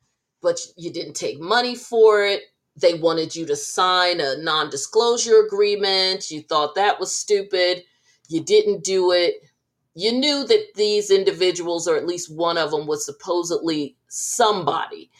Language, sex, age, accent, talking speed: English, female, 40-59, American, 150 wpm